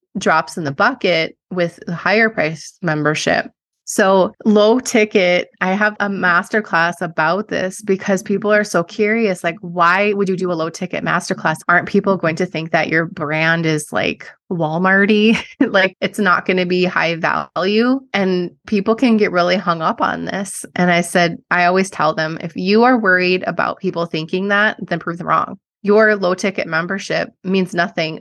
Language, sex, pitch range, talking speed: English, female, 160-195 Hz, 180 wpm